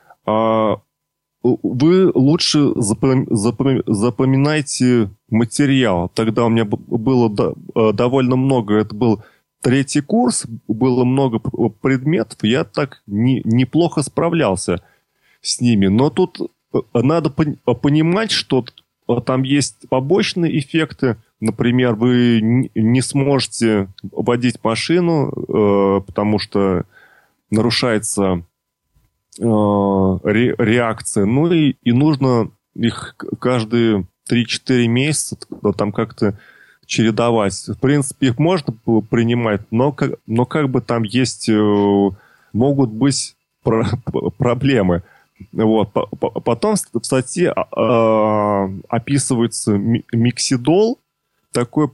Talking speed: 85 wpm